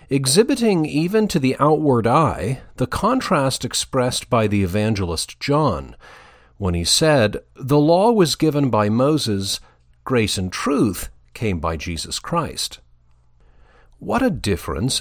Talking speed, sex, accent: 130 wpm, male, American